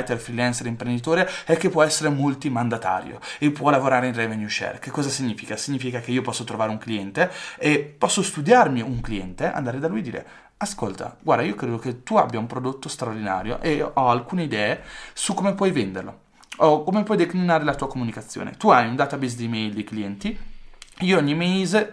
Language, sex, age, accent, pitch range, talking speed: Italian, male, 20-39, native, 125-190 Hz, 195 wpm